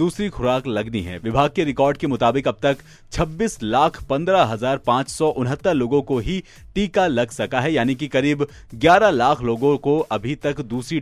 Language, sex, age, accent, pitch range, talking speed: Hindi, male, 30-49, native, 110-155 Hz, 180 wpm